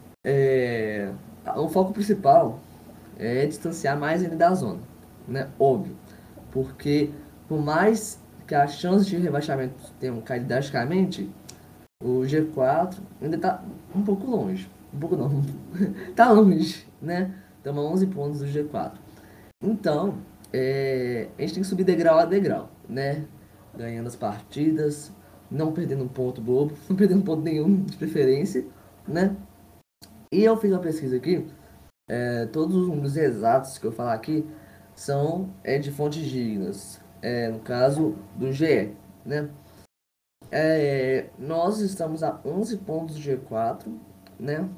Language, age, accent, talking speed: Portuguese, 10-29, Brazilian, 135 wpm